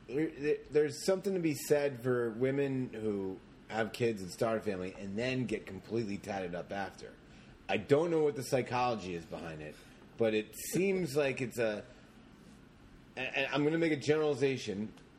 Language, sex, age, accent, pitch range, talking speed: English, male, 30-49, American, 100-140 Hz, 165 wpm